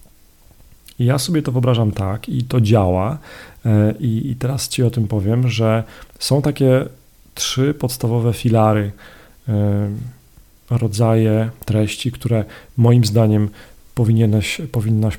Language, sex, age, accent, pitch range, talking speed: Polish, male, 40-59, native, 110-130 Hz, 105 wpm